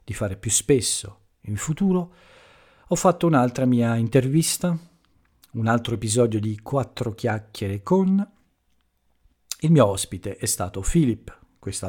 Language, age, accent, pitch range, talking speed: Italian, 50-69, native, 95-120 Hz, 120 wpm